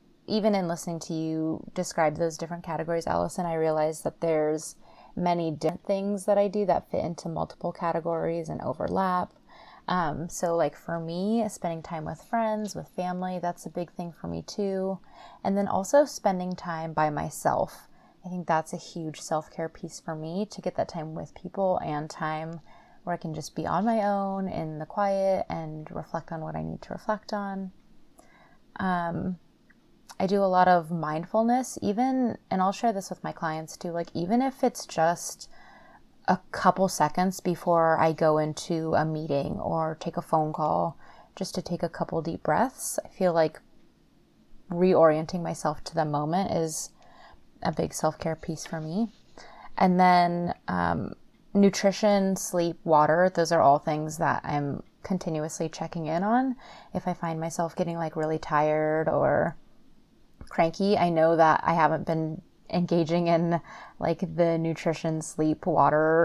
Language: English